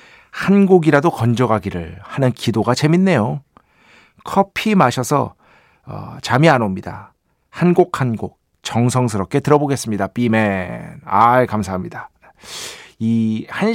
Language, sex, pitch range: Korean, male, 110-165 Hz